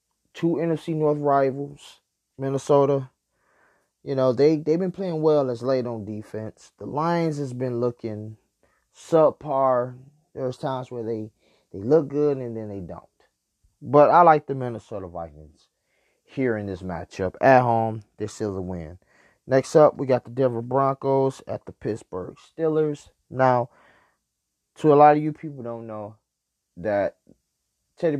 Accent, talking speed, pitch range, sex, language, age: American, 150 wpm, 115-145 Hz, male, English, 20-39